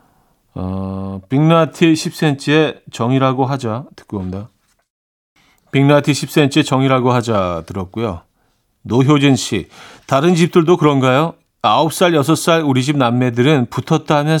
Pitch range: 115-160 Hz